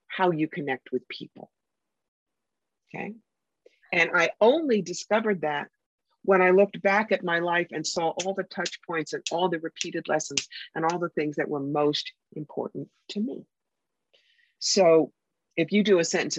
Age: 50-69